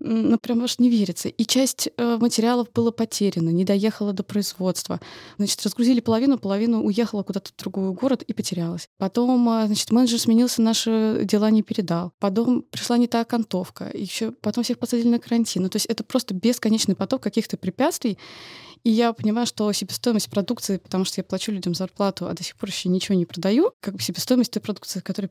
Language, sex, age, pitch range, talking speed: Russian, female, 20-39, 185-230 Hz, 195 wpm